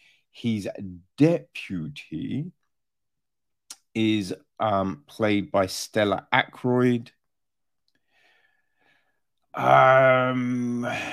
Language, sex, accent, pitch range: English, male, British, 105-140 Hz